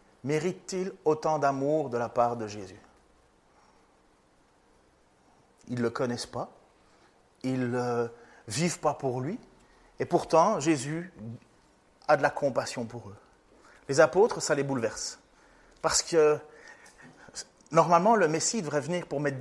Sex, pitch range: male, 130-215 Hz